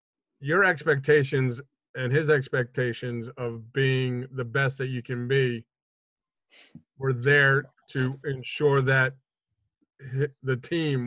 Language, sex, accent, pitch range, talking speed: English, male, American, 125-140 Hz, 110 wpm